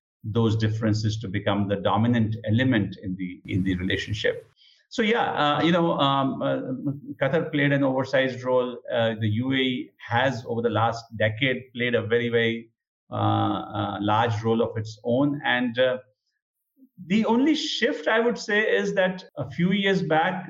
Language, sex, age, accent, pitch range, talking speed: English, male, 50-69, Indian, 105-140 Hz, 165 wpm